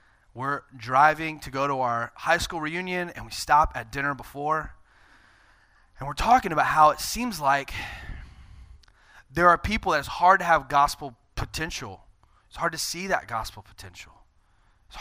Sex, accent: male, American